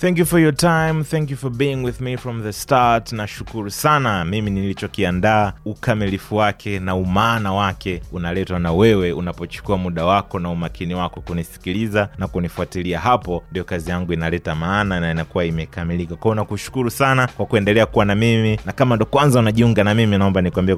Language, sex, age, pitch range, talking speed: Swahili, male, 30-49, 90-105 Hz, 175 wpm